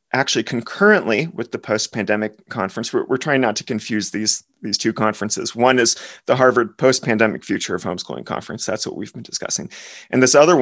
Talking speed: 185 wpm